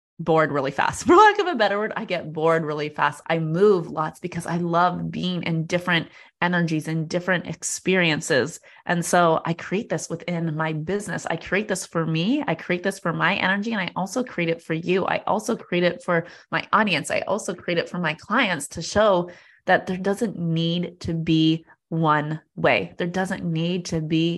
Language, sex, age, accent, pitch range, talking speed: English, female, 20-39, American, 160-180 Hz, 200 wpm